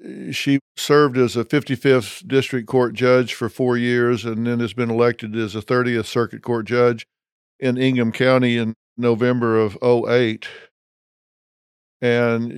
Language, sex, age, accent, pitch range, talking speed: English, male, 50-69, American, 115-130 Hz, 145 wpm